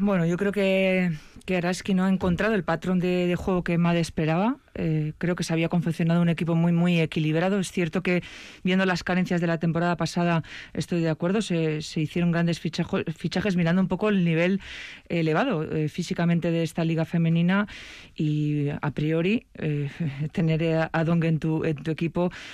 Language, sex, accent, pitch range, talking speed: Spanish, female, Spanish, 160-185 Hz, 190 wpm